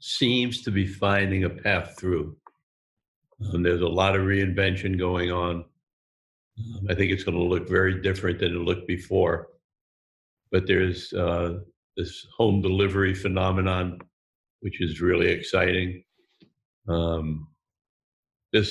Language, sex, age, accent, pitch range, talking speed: English, male, 60-79, American, 90-100 Hz, 130 wpm